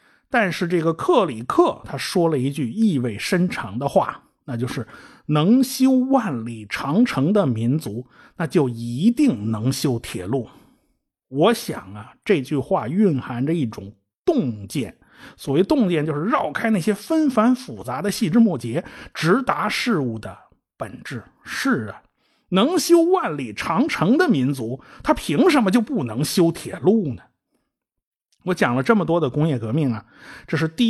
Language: Chinese